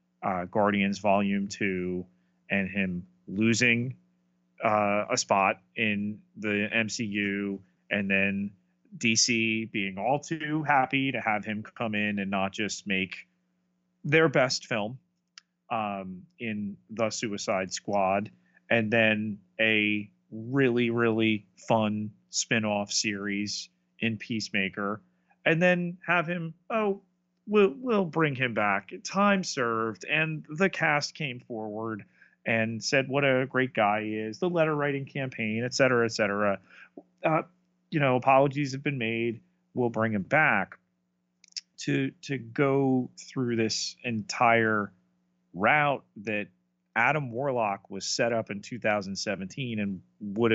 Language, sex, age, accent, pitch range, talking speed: English, male, 30-49, American, 100-130 Hz, 130 wpm